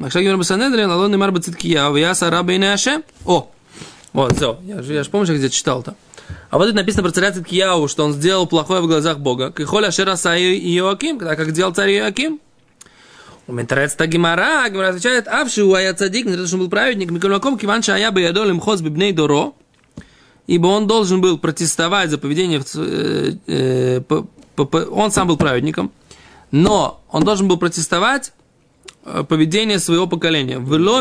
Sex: male